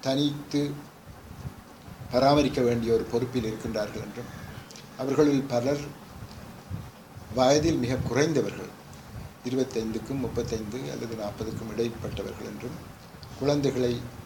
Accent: Indian